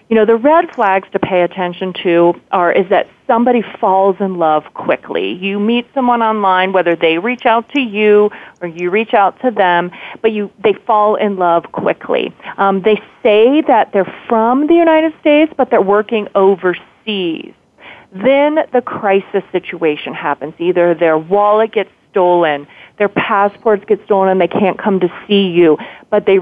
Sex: female